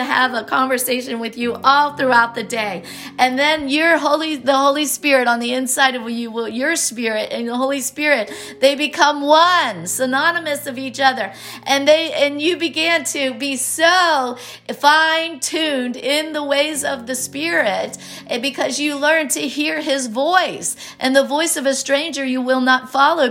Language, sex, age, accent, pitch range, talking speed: English, female, 50-69, American, 245-295 Hz, 175 wpm